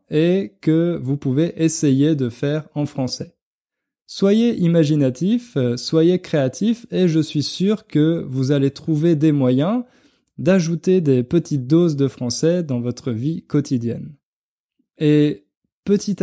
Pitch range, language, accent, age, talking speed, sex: 130-170 Hz, French, French, 20-39, 130 wpm, male